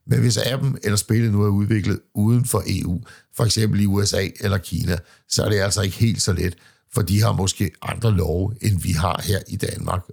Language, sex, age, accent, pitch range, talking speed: Danish, male, 60-79, native, 90-110 Hz, 220 wpm